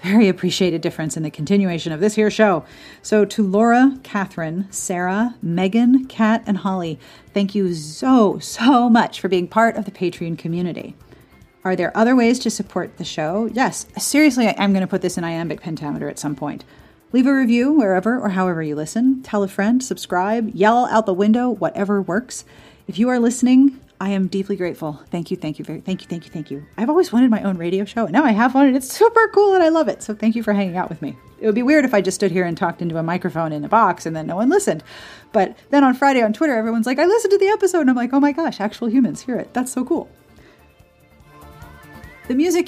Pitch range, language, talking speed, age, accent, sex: 185-245 Hz, English, 235 wpm, 40-59, American, female